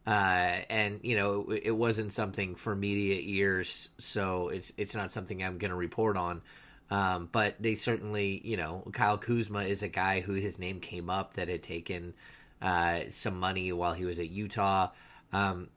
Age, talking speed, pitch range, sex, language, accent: 30-49, 185 wpm, 95-120 Hz, male, English, American